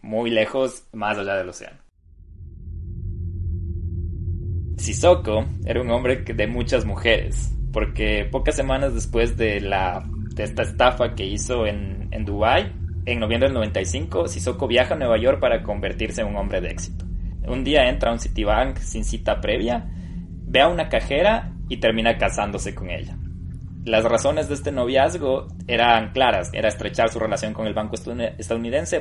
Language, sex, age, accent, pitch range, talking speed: Spanish, male, 20-39, Mexican, 90-115 Hz, 155 wpm